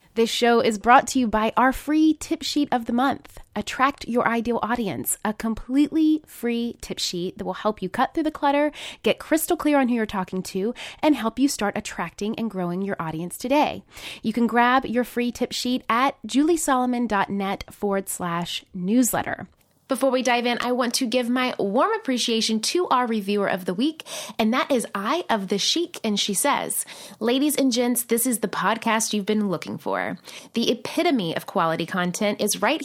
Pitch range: 205-265 Hz